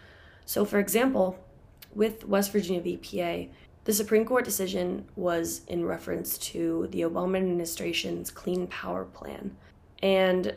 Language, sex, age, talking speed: English, female, 20-39, 125 wpm